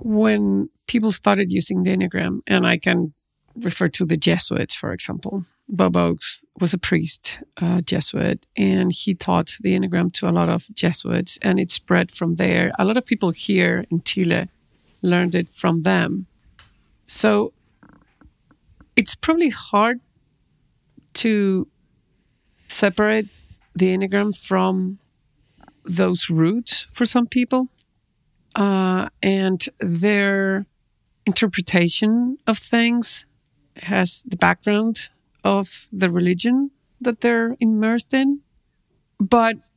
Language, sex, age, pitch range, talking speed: English, female, 50-69, 175-215 Hz, 120 wpm